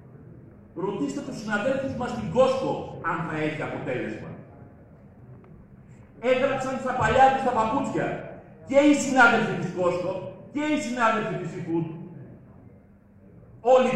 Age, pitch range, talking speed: 40-59, 140-225 Hz, 115 wpm